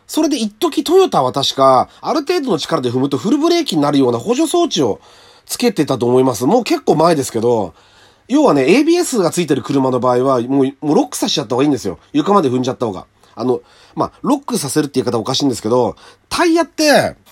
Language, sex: Japanese, male